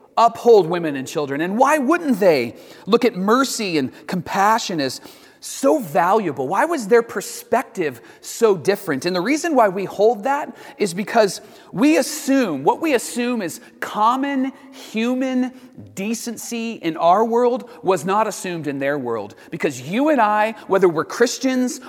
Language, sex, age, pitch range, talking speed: English, male, 40-59, 175-255 Hz, 155 wpm